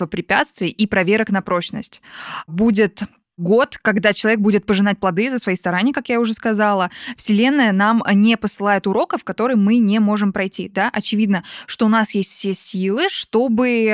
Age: 20-39